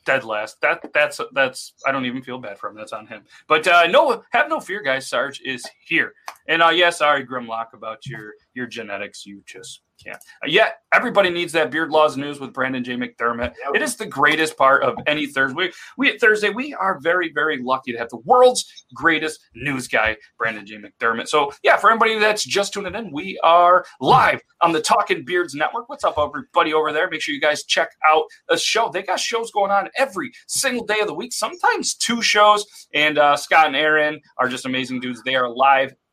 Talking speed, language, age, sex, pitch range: 215 wpm, English, 30-49, male, 135-215 Hz